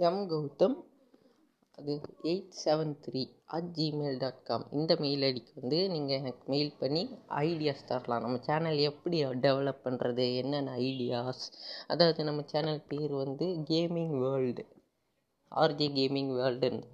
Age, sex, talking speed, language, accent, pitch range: 20-39, female, 110 wpm, Tamil, native, 135-165 Hz